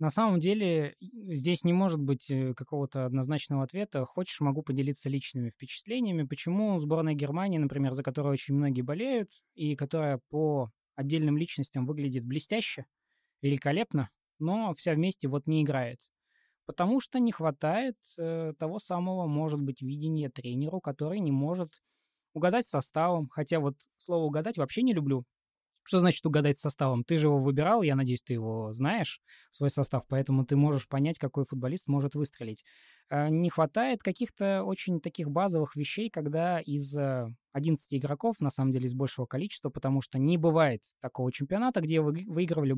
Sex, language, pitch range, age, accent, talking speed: male, Russian, 135-170 Hz, 20-39, native, 155 wpm